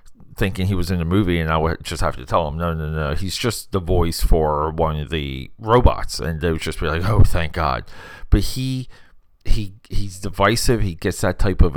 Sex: male